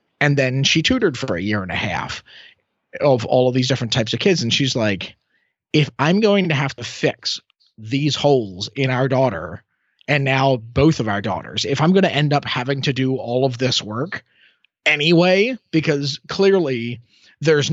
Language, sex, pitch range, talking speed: English, male, 115-145 Hz, 190 wpm